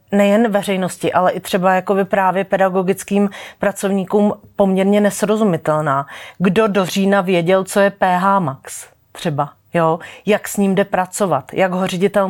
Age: 30-49